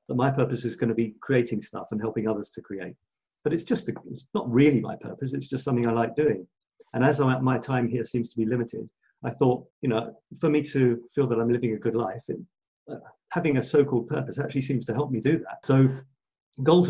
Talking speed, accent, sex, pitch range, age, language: 240 wpm, British, male, 115-135 Hz, 50-69, English